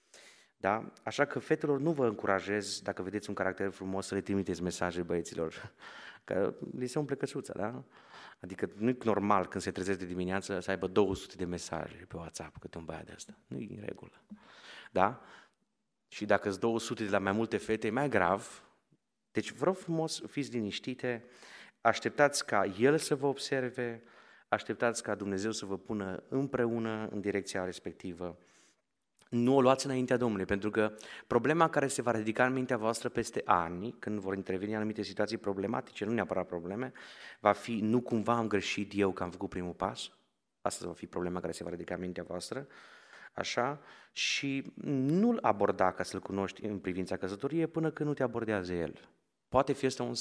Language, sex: Romanian, male